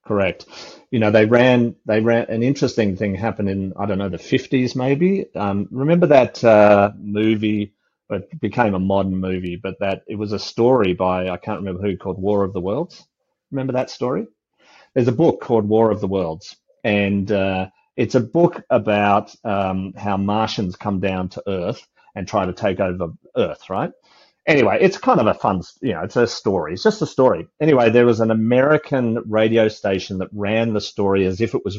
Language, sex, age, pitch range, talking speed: English, male, 40-59, 100-130 Hz, 200 wpm